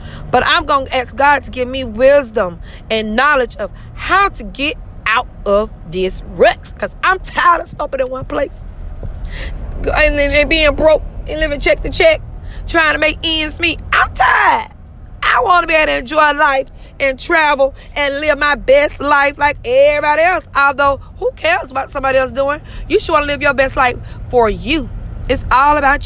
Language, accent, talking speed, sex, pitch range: English, American, 195 wpm, female, 180-290 Hz